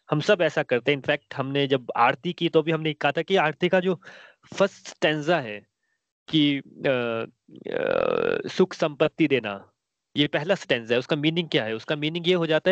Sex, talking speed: male, 115 wpm